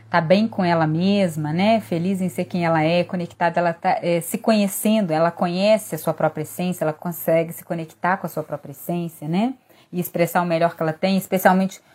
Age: 20-39